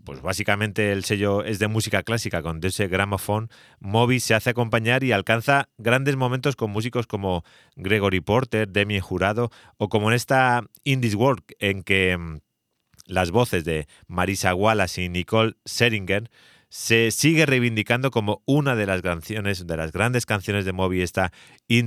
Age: 30-49